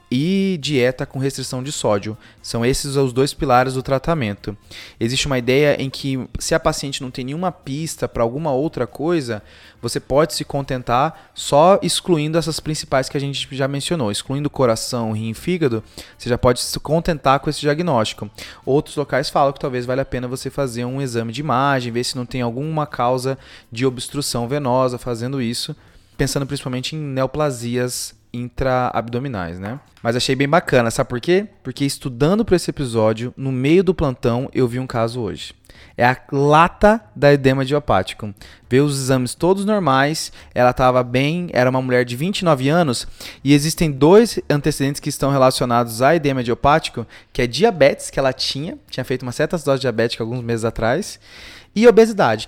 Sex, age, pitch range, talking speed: male, 20-39, 120-150 Hz, 175 wpm